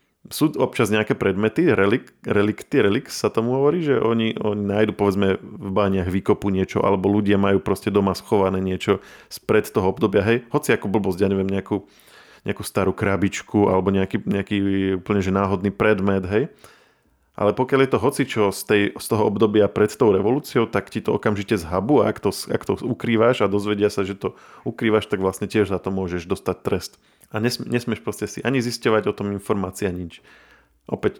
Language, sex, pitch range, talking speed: Slovak, male, 95-110 Hz, 185 wpm